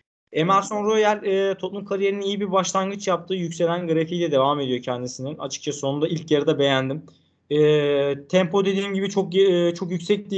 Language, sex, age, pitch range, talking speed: Turkish, male, 20-39, 155-185 Hz, 160 wpm